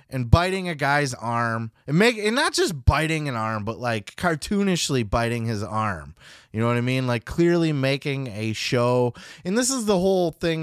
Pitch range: 105-145 Hz